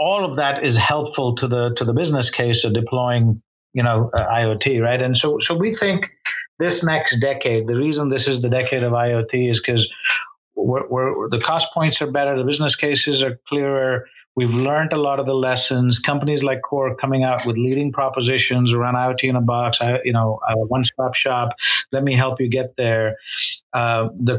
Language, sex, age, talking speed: English, male, 50-69, 200 wpm